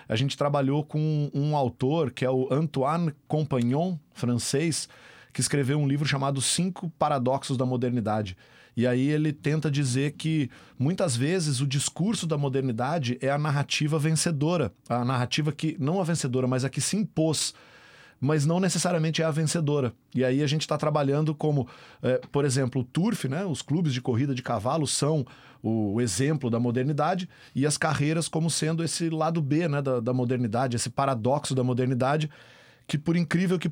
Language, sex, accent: Portuguese, male, Brazilian